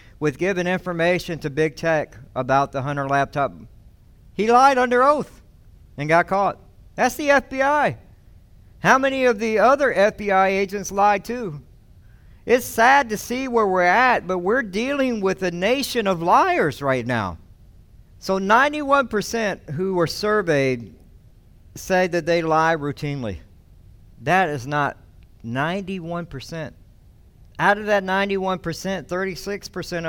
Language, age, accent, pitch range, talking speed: English, 50-69, American, 115-185 Hz, 130 wpm